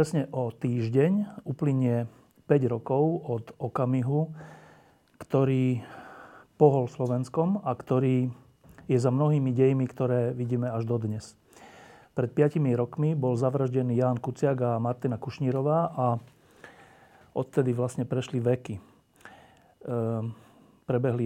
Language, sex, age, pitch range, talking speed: Slovak, male, 40-59, 120-145 Hz, 105 wpm